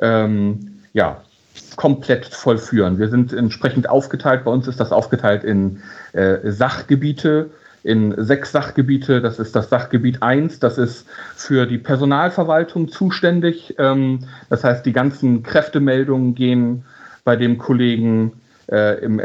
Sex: male